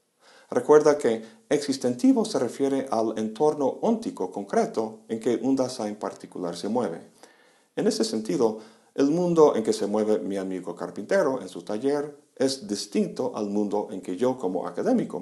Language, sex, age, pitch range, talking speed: Spanish, male, 50-69, 100-140 Hz, 160 wpm